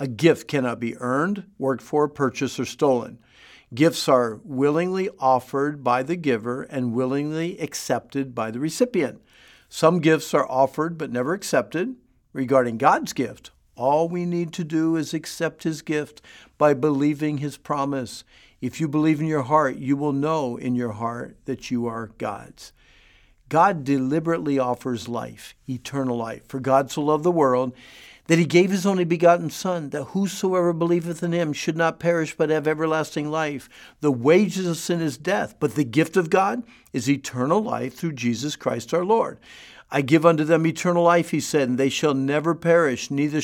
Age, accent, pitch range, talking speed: 50-69, American, 130-160 Hz, 175 wpm